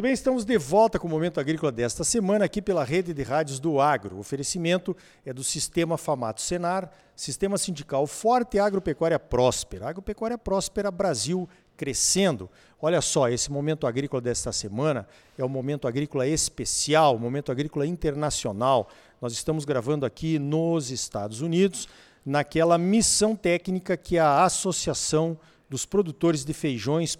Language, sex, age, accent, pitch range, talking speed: Portuguese, male, 50-69, Brazilian, 135-180 Hz, 145 wpm